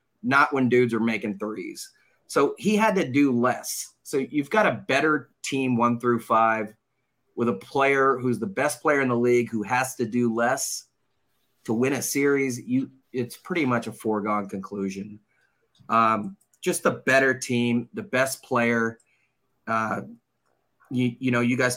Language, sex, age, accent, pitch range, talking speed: English, male, 30-49, American, 115-130 Hz, 170 wpm